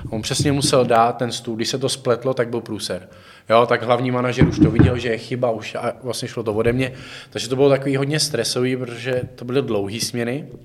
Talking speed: 230 wpm